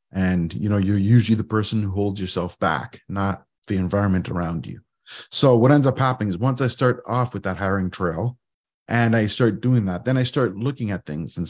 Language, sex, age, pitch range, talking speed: English, male, 30-49, 100-130 Hz, 220 wpm